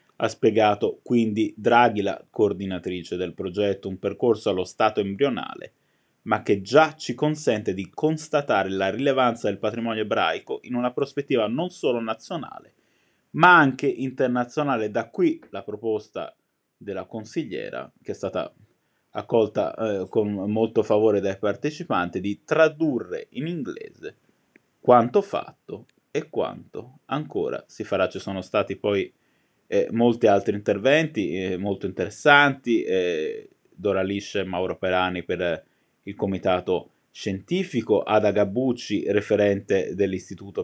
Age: 20-39